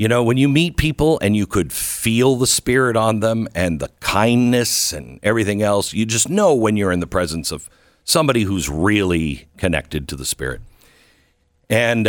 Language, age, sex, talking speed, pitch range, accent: English, 60-79, male, 185 wpm, 80-105 Hz, American